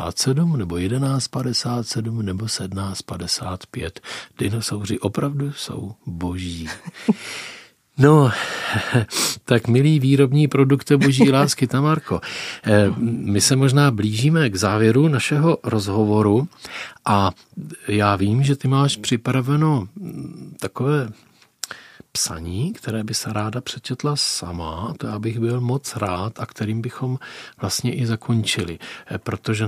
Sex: male